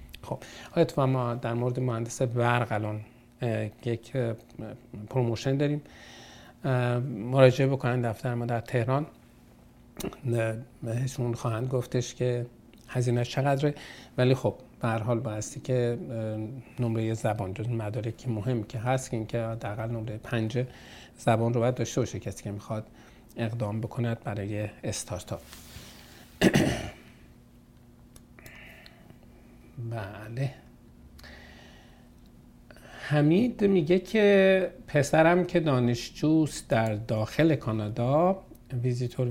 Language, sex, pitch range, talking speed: Persian, male, 115-130 Hz, 100 wpm